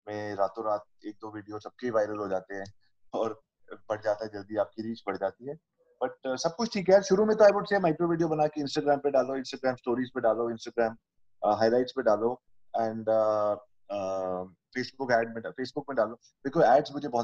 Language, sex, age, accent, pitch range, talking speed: Hindi, male, 30-49, native, 115-145 Hz, 85 wpm